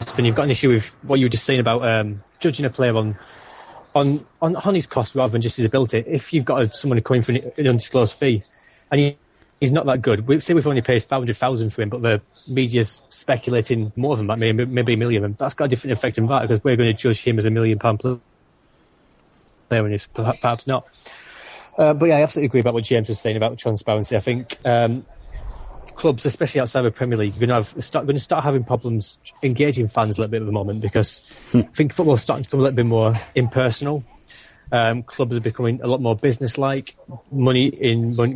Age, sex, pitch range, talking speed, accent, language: 20-39, male, 115-135 Hz, 235 wpm, British, English